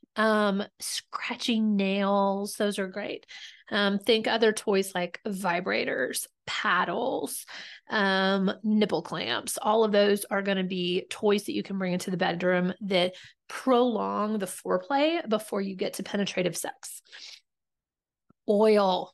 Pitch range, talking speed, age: 200-270 Hz, 130 wpm, 30-49